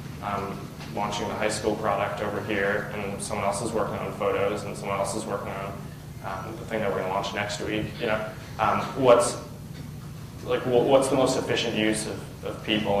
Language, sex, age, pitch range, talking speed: English, male, 20-39, 100-125 Hz, 205 wpm